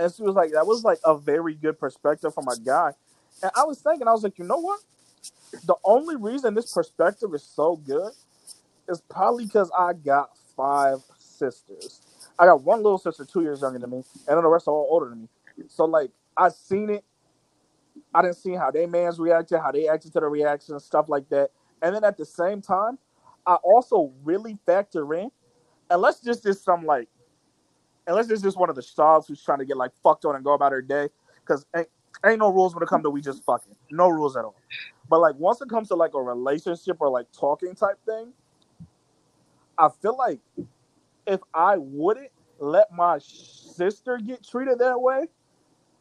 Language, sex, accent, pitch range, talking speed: English, male, American, 150-210 Hz, 205 wpm